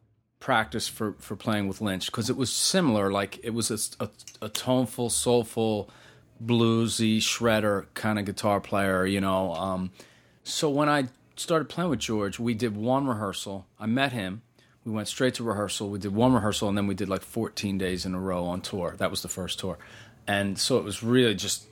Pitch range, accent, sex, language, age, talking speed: 100-120 Hz, American, male, English, 30-49, 200 wpm